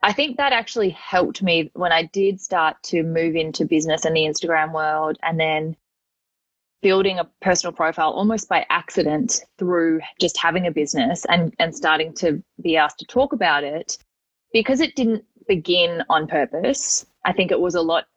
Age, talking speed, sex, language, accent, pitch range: 20-39, 180 wpm, female, English, Australian, 160-215 Hz